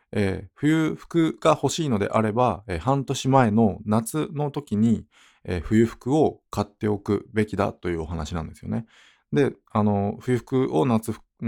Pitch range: 90-120 Hz